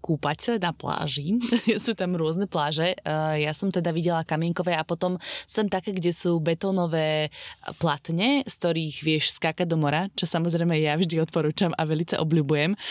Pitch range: 155-185 Hz